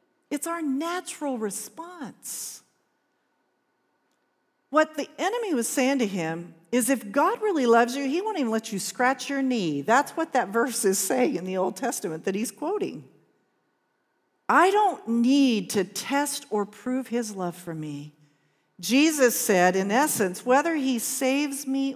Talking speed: 155 wpm